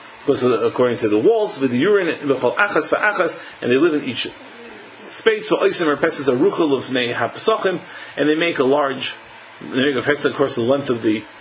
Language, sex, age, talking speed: English, male, 30-49, 140 wpm